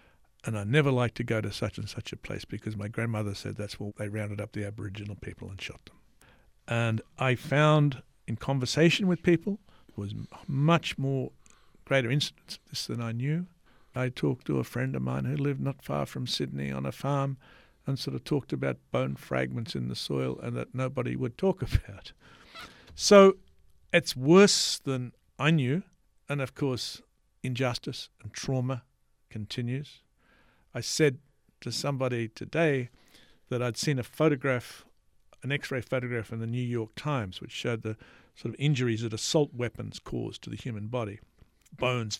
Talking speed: 170 wpm